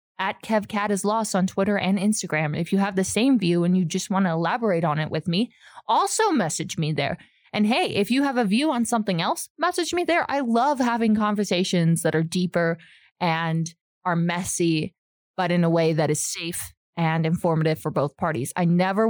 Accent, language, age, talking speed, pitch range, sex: American, English, 20-39, 205 wpm, 165-235 Hz, female